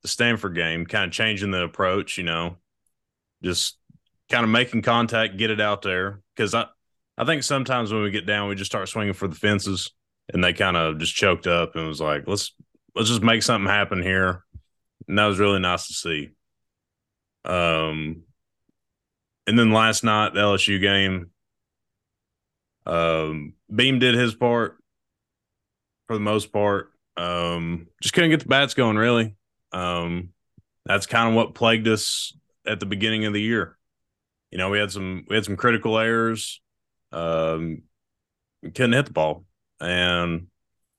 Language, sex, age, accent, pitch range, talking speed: English, male, 20-39, American, 90-115 Hz, 165 wpm